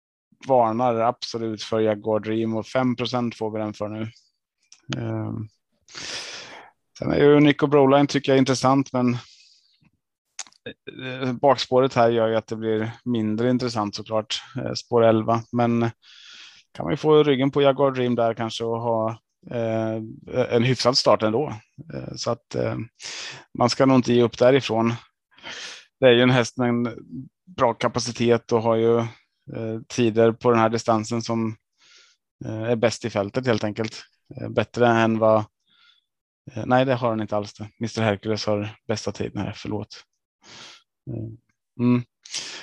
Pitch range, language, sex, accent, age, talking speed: 110-125 Hz, Swedish, male, Norwegian, 20-39, 140 wpm